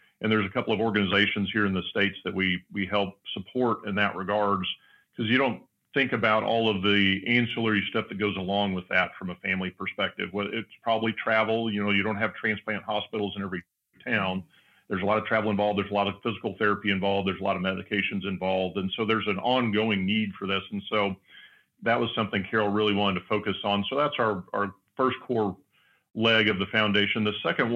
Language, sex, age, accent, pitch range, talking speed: English, male, 40-59, American, 100-115 Hz, 220 wpm